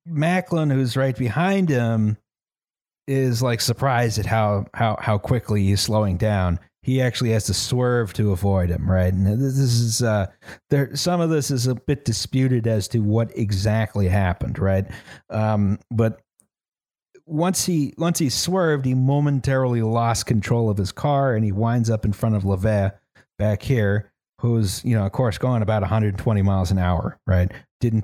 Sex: male